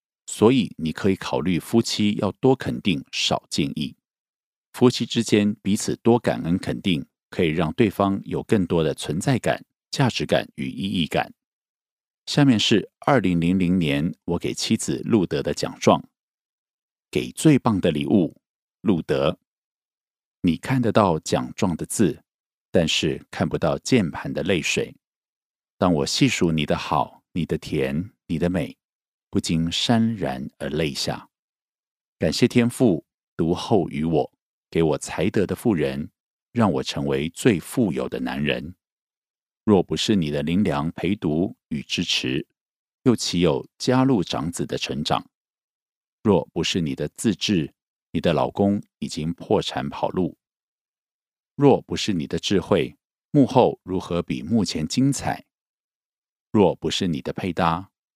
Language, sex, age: Korean, male, 50-69